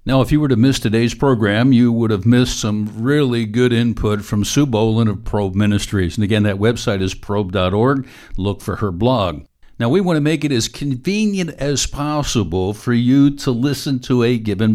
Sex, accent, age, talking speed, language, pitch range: male, American, 60-79, 200 wpm, English, 110-135 Hz